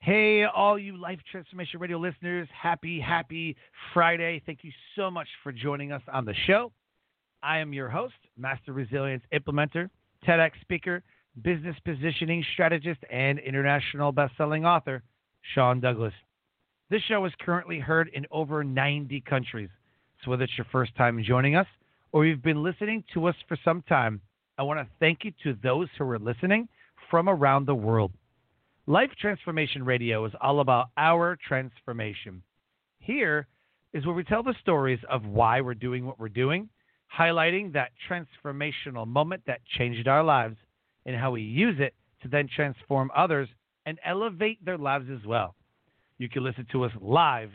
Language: English